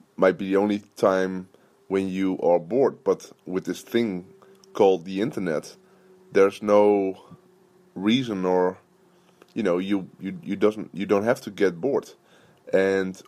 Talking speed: 150 wpm